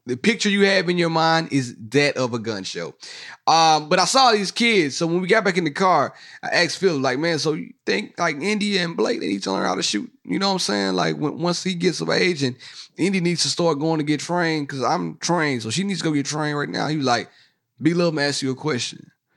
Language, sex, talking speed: English, male, 270 wpm